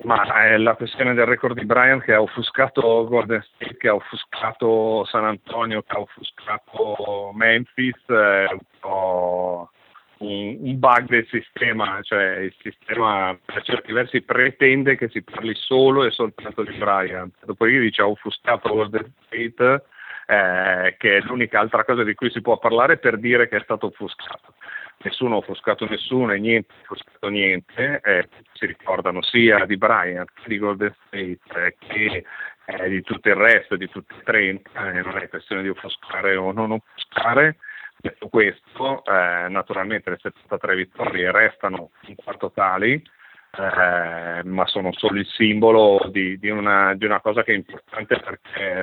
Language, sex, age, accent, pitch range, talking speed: Italian, male, 40-59, native, 95-115 Hz, 165 wpm